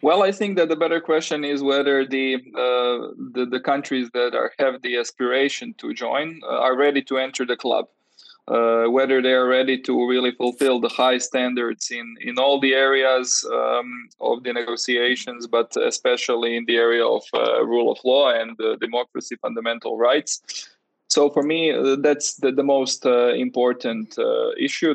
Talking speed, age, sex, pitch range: 180 wpm, 20-39, male, 120-140 Hz